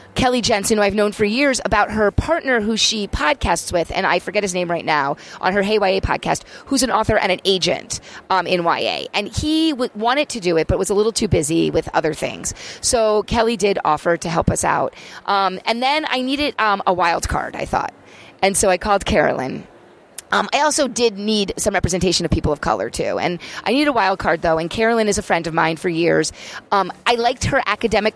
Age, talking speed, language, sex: 30-49, 230 wpm, English, female